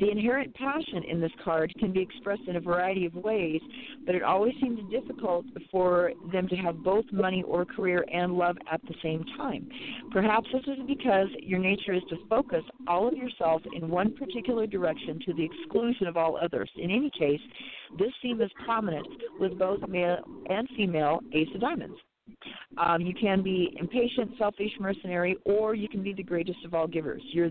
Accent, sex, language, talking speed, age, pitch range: American, female, English, 190 wpm, 40-59, 170-220 Hz